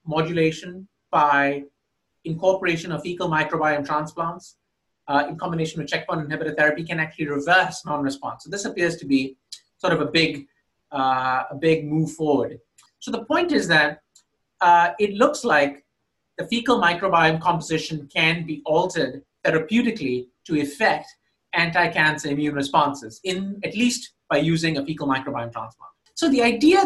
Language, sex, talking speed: English, male, 145 wpm